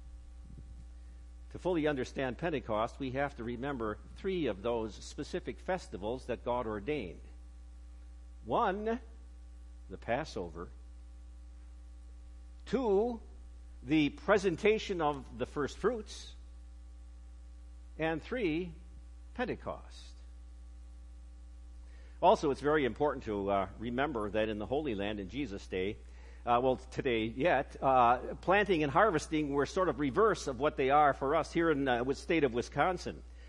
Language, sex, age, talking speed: English, male, 50-69, 120 wpm